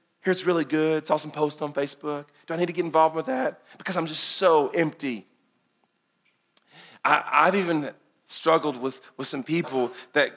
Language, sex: English, male